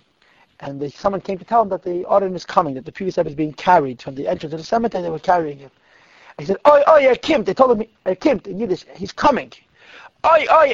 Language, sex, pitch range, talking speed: English, male, 160-225 Hz, 250 wpm